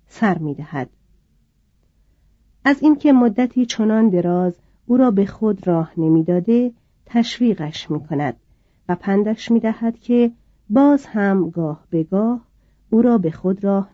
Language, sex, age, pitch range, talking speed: Persian, female, 40-59, 165-225 Hz, 140 wpm